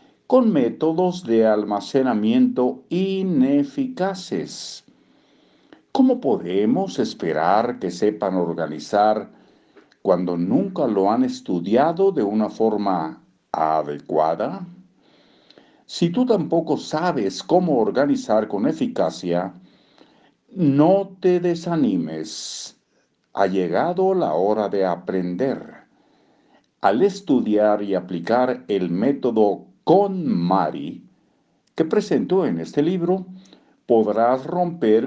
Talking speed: 90 wpm